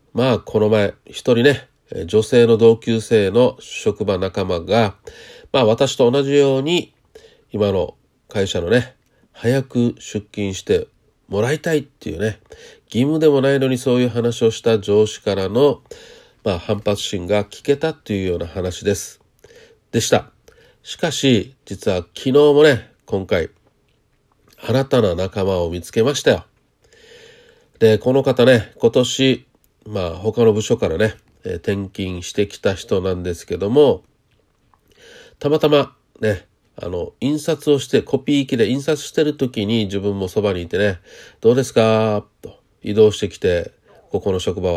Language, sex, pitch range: Japanese, male, 105-160 Hz